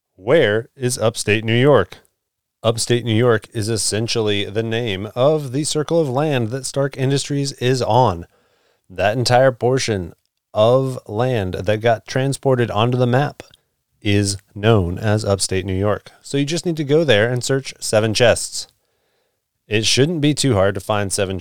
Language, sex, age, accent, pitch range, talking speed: English, male, 30-49, American, 105-140 Hz, 165 wpm